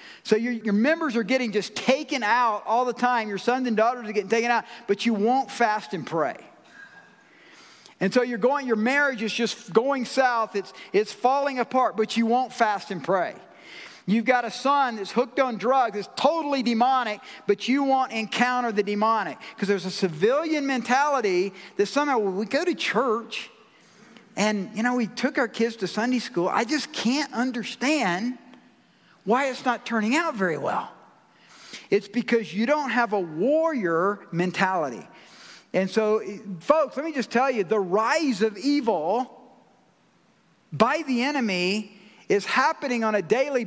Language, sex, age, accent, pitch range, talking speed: English, male, 50-69, American, 215-270 Hz, 170 wpm